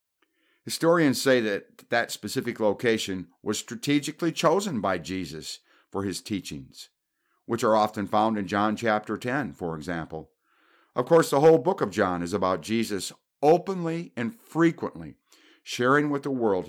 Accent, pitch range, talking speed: American, 80-125 Hz, 145 wpm